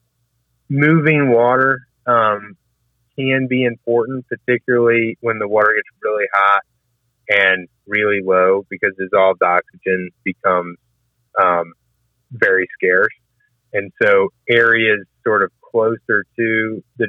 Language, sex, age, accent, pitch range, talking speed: English, male, 30-49, American, 95-120 Hz, 110 wpm